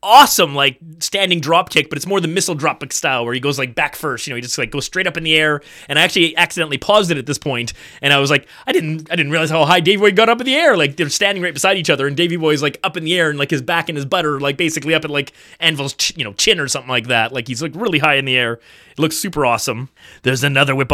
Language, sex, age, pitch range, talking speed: English, male, 30-49, 140-170 Hz, 310 wpm